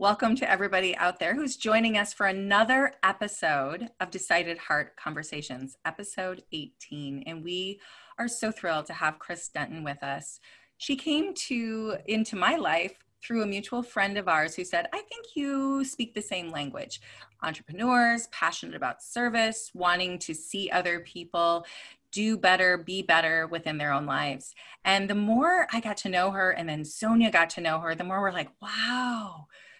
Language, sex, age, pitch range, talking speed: English, female, 30-49, 170-225 Hz, 175 wpm